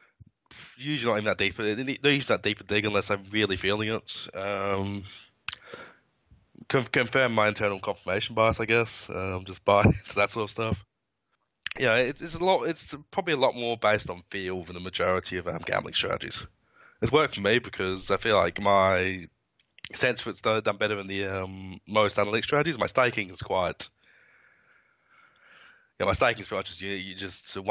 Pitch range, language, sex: 95-110 Hz, English, male